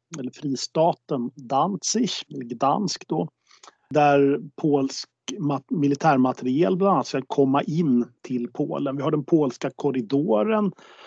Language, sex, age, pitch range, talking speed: Swedish, male, 40-59, 130-165 Hz, 120 wpm